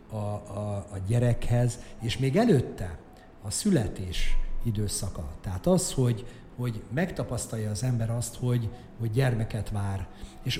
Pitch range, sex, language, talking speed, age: 110-130 Hz, male, Hungarian, 130 wpm, 50-69